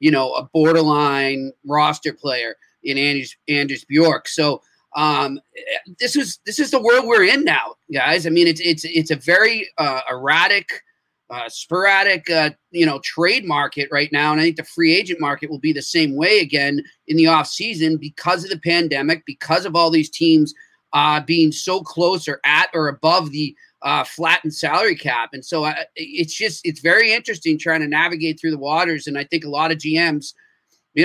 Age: 30-49